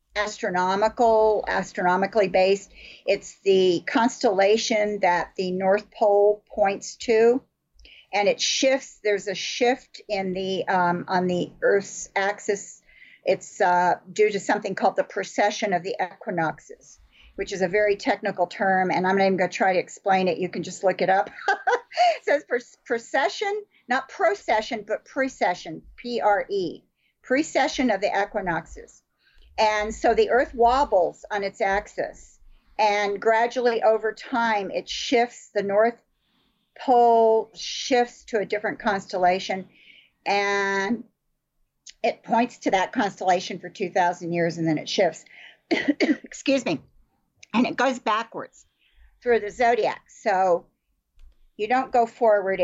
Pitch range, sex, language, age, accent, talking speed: 195-245 Hz, female, English, 50-69, American, 135 wpm